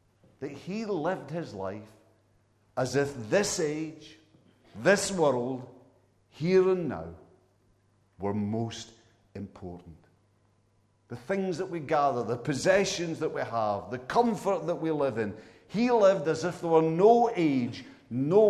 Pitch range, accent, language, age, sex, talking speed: 105-165 Hz, British, English, 50-69, male, 135 wpm